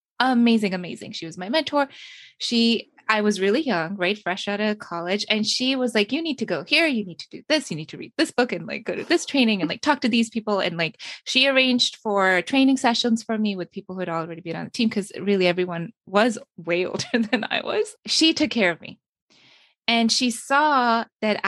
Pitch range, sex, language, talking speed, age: 185-255 Hz, female, English, 235 wpm, 20-39